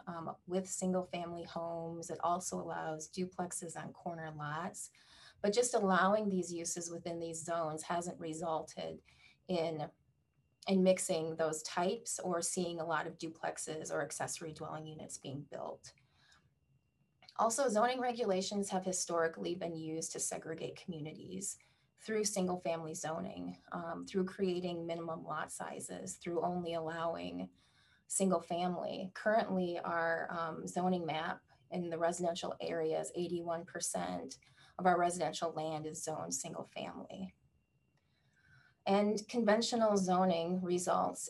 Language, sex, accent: English, female, American